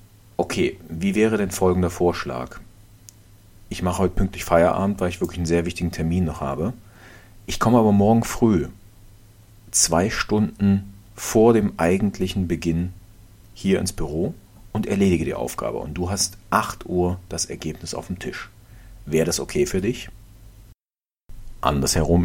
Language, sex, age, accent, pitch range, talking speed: German, male, 40-59, German, 85-110 Hz, 145 wpm